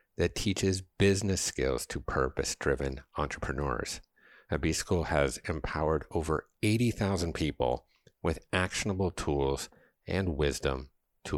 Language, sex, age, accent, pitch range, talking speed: English, male, 50-69, American, 70-95 Hz, 105 wpm